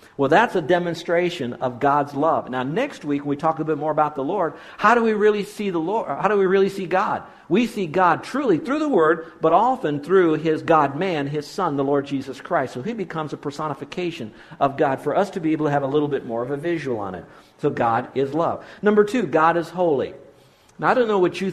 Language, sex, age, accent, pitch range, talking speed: English, male, 50-69, American, 135-170 Hz, 250 wpm